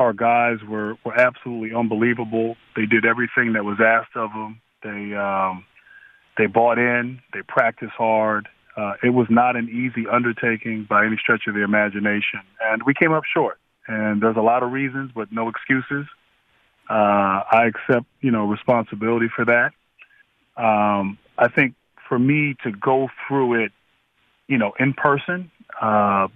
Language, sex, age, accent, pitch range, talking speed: English, male, 30-49, American, 110-135 Hz, 160 wpm